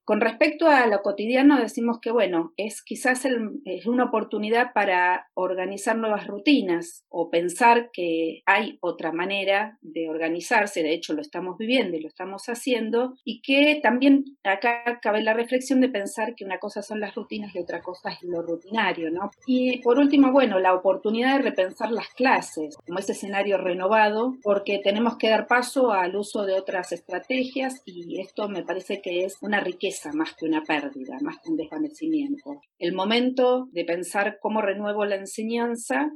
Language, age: Spanish, 40-59